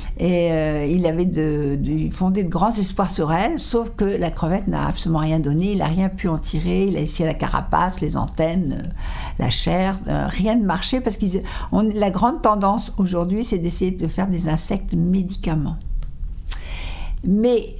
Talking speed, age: 180 wpm, 60-79